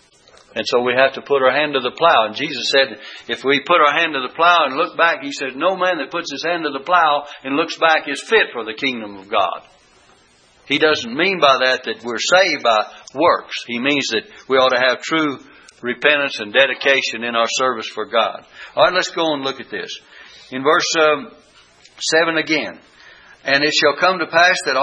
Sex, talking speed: male, 220 wpm